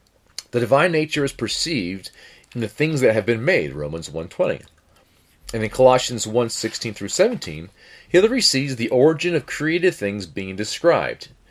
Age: 40-59